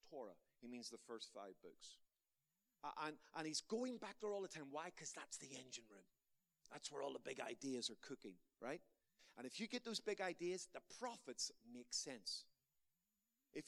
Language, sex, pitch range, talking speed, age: English, male, 125-200 Hz, 190 wpm, 40-59